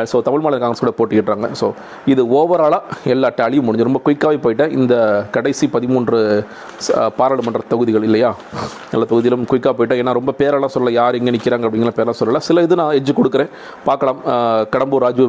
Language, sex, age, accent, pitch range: Tamil, male, 40-59, native, 115-140 Hz